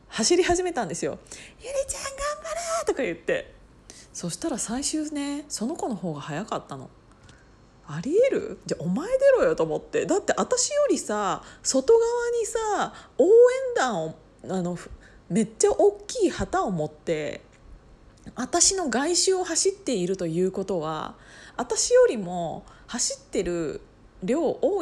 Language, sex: Japanese, female